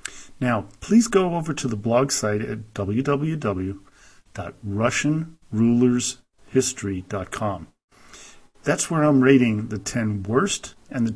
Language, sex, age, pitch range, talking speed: English, male, 50-69, 105-135 Hz, 100 wpm